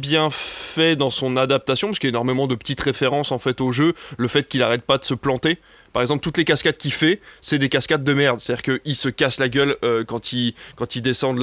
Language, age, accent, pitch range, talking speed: French, 20-39, French, 130-160 Hz, 275 wpm